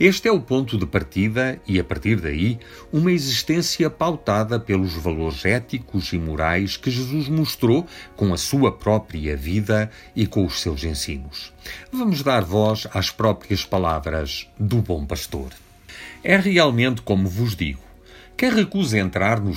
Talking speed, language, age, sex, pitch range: 150 wpm, Portuguese, 50-69, male, 85-120 Hz